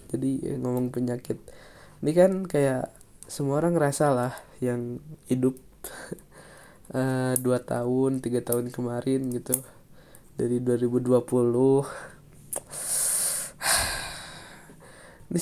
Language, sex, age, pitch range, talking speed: Indonesian, male, 20-39, 130-160 Hz, 80 wpm